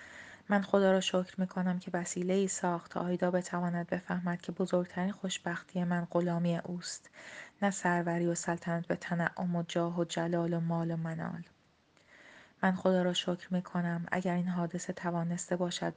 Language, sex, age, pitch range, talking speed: Persian, female, 30-49, 170-185 Hz, 165 wpm